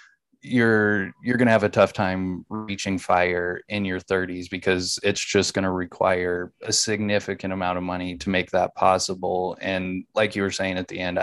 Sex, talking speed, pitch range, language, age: male, 190 wpm, 95-105 Hz, English, 20-39